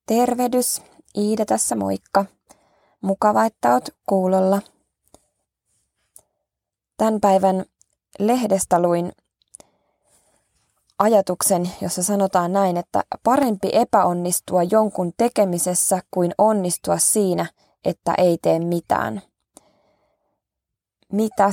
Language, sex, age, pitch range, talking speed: Finnish, female, 20-39, 175-200 Hz, 80 wpm